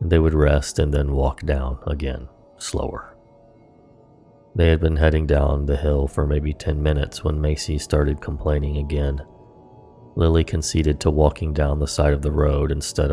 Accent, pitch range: American, 75-80 Hz